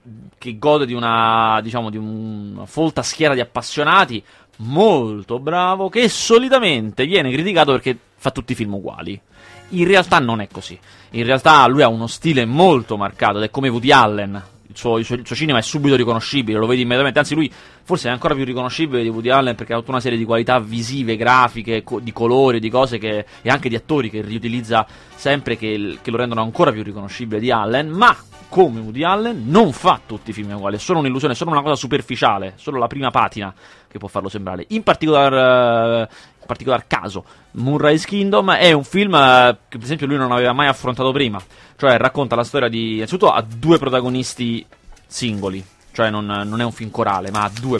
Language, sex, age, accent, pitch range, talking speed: Italian, male, 30-49, native, 110-140 Hz, 205 wpm